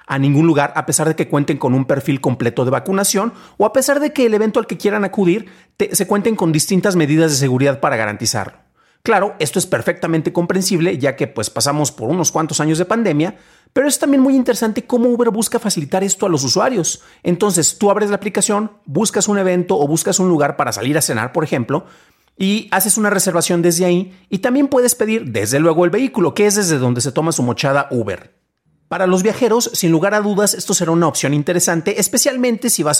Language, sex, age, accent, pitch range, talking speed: Spanish, male, 40-59, Mexican, 145-205 Hz, 215 wpm